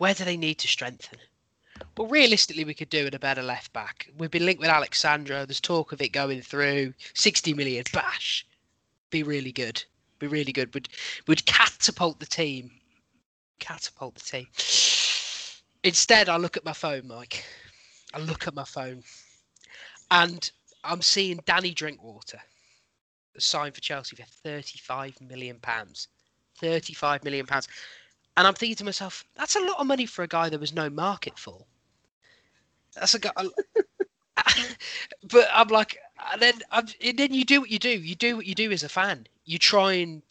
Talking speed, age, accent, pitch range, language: 170 wpm, 20-39, British, 145-215 Hz, English